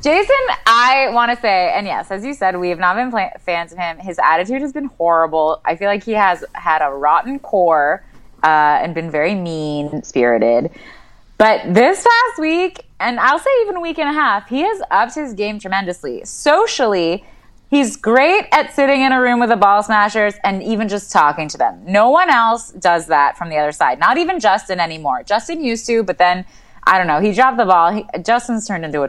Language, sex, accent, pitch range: English, female, American, 195-290 Hz